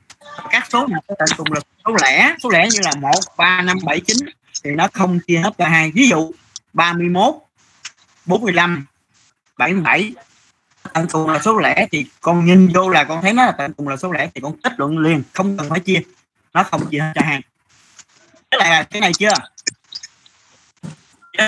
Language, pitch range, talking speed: Vietnamese, 145-200 Hz, 185 wpm